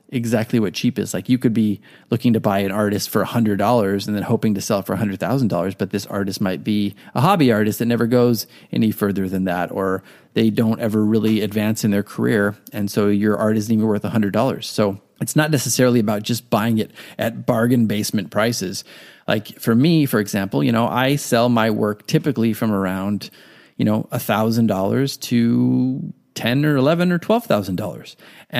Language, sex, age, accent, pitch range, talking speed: English, male, 30-49, American, 105-120 Hz, 205 wpm